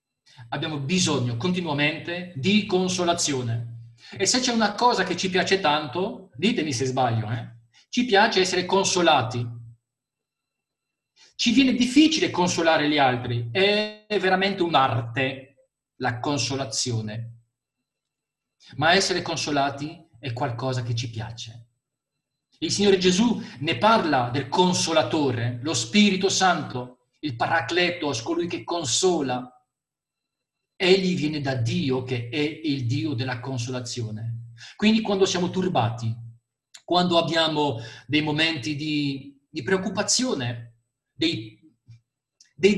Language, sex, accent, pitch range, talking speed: Italian, male, native, 125-185 Hz, 110 wpm